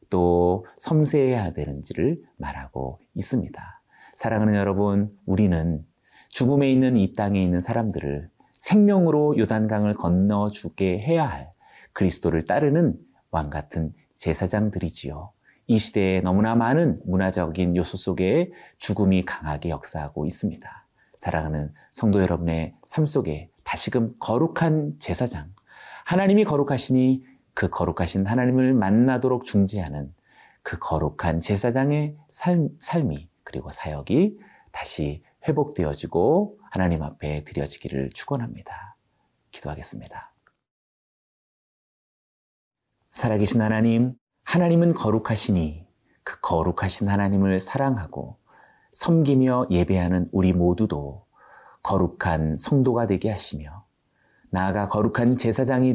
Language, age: Korean, 30-49